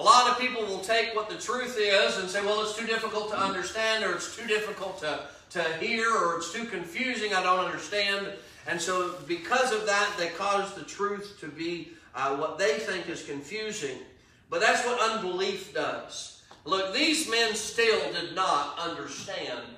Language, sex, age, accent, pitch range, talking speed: English, male, 40-59, American, 155-215 Hz, 185 wpm